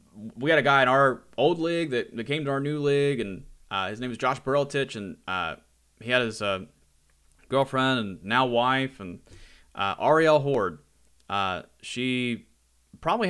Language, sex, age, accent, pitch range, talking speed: English, male, 30-49, American, 110-140 Hz, 175 wpm